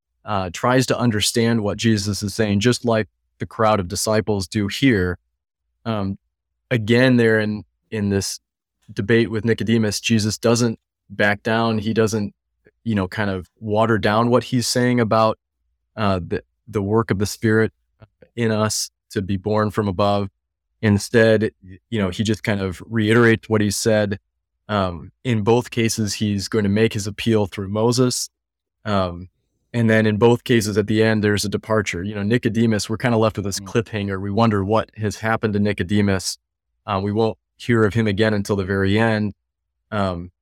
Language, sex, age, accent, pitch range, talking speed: English, male, 20-39, American, 95-110 Hz, 175 wpm